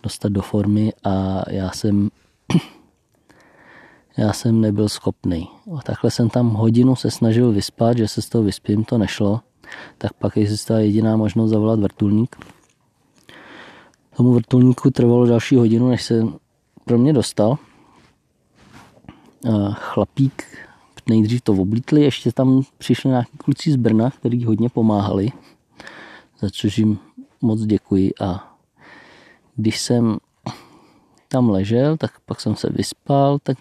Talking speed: 130 wpm